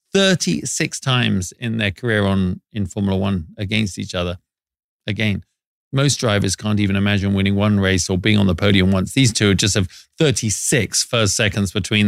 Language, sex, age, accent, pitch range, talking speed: English, male, 40-59, British, 105-135 Hz, 175 wpm